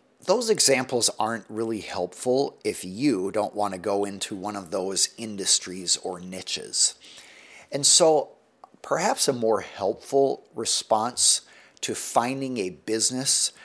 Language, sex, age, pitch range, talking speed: English, male, 50-69, 95-135 Hz, 125 wpm